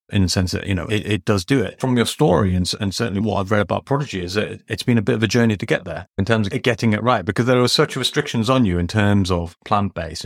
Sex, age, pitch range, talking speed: male, 30-49, 95-125 Hz, 310 wpm